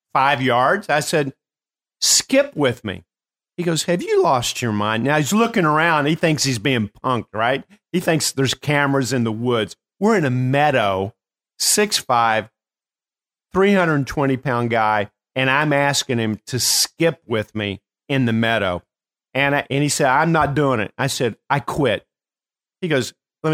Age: 50-69